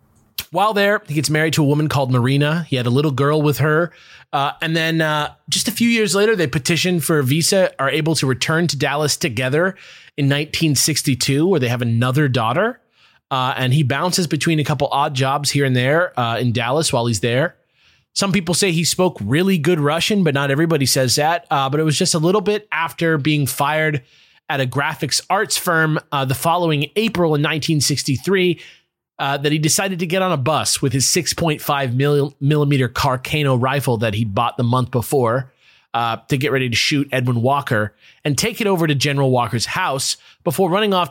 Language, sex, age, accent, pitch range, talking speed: English, male, 20-39, American, 135-170 Hz, 205 wpm